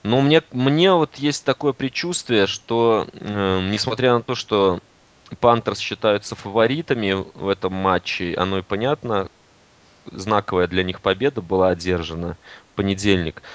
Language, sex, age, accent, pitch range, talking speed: Russian, male, 20-39, native, 100-130 Hz, 135 wpm